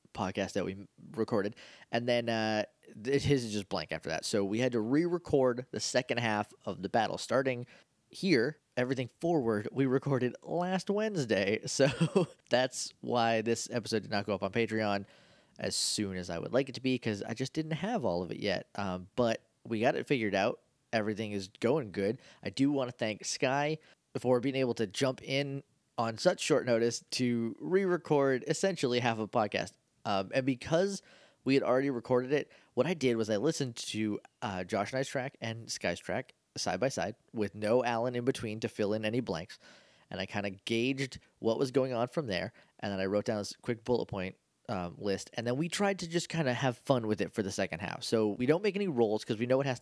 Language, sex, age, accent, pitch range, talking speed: English, male, 20-39, American, 110-140 Hz, 215 wpm